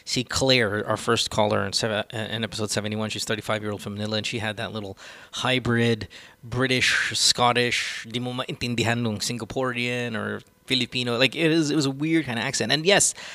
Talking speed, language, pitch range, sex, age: 155 wpm, English, 110-140 Hz, male, 20-39